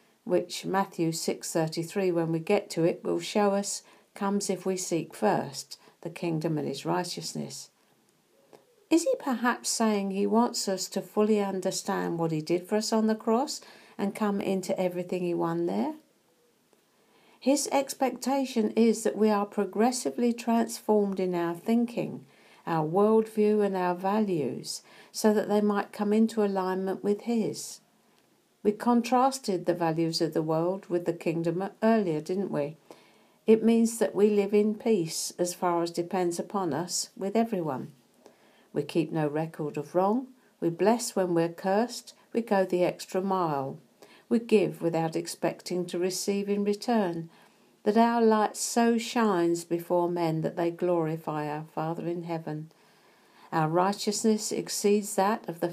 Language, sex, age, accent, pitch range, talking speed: English, female, 60-79, British, 170-215 Hz, 155 wpm